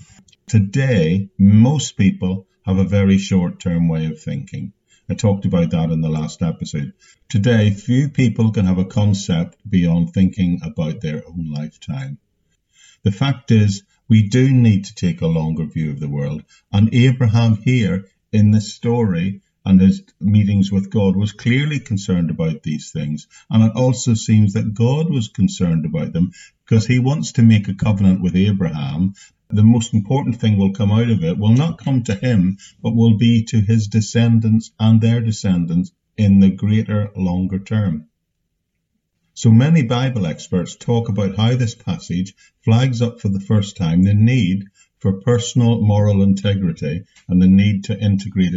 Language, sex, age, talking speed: English, male, 50-69, 170 wpm